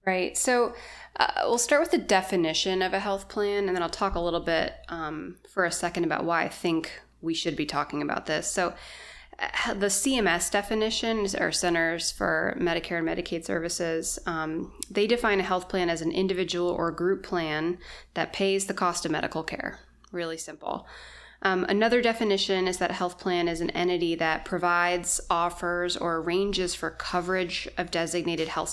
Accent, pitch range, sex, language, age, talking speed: American, 170-195 Hz, female, English, 20-39, 180 wpm